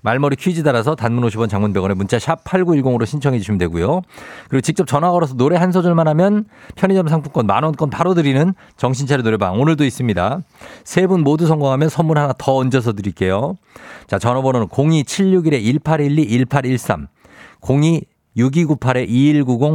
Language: Korean